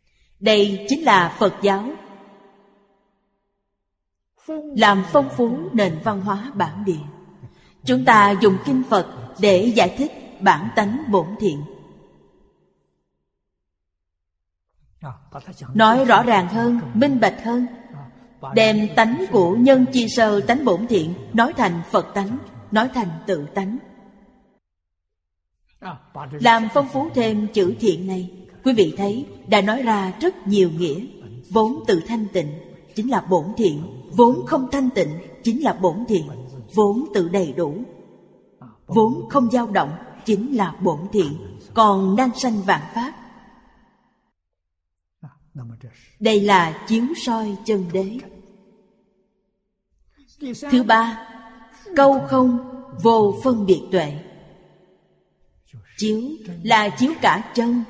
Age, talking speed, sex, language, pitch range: 30-49, 120 wpm, female, Vietnamese, 180-235 Hz